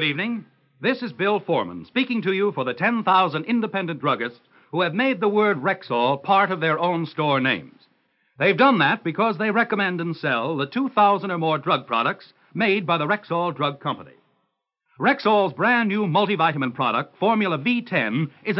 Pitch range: 160-220 Hz